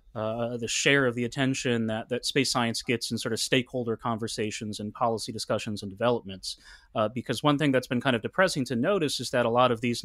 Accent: American